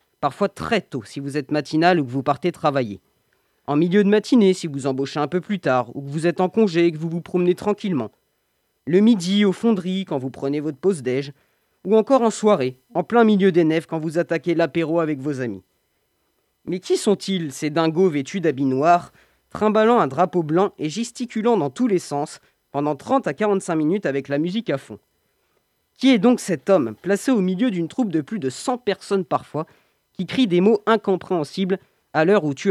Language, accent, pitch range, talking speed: French, French, 150-220 Hz, 205 wpm